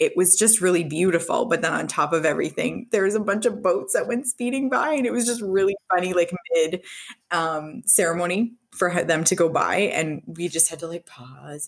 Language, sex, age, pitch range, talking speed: English, female, 20-39, 150-200 Hz, 220 wpm